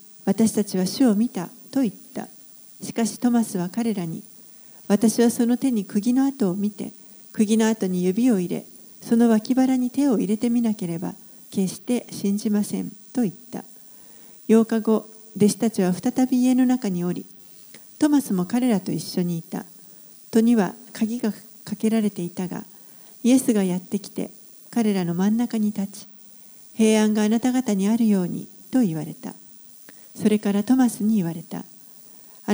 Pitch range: 195-235 Hz